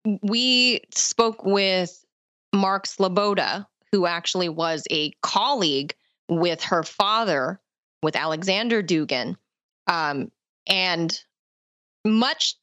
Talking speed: 90 wpm